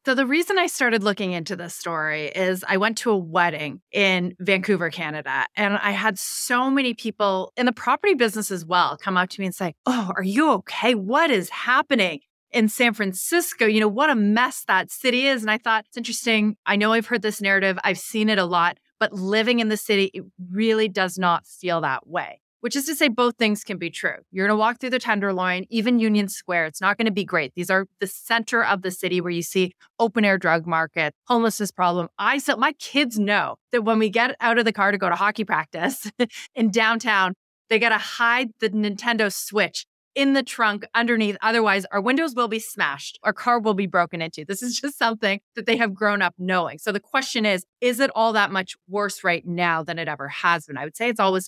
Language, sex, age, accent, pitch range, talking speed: English, female, 30-49, American, 185-235 Hz, 230 wpm